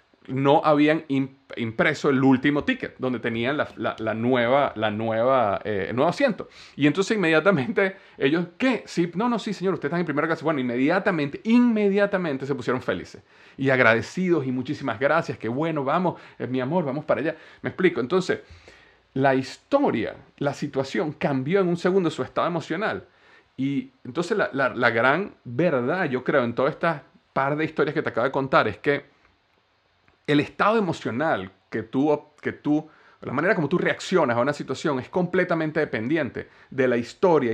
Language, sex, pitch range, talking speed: English, male, 130-170 Hz, 175 wpm